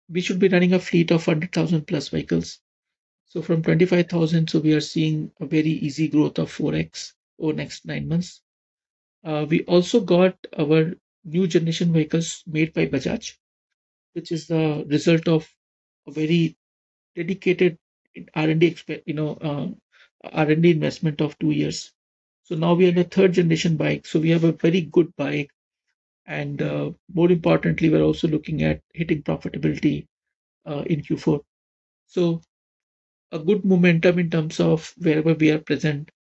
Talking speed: 150 wpm